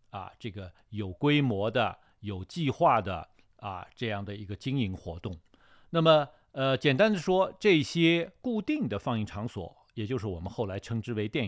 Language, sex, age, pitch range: Chinese, male, 50-69, 100-150 Hz